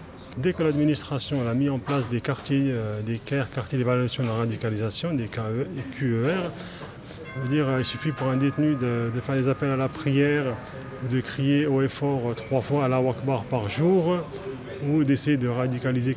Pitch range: 125-150 Hz